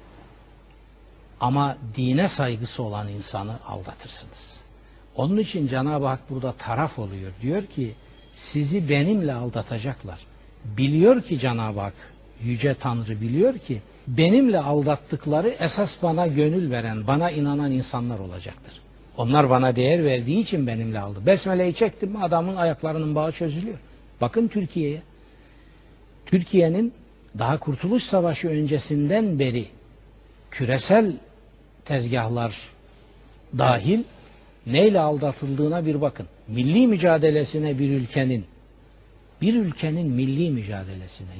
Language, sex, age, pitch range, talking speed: Turkish, male, 60-79, 120-160 Hz, 105 wpm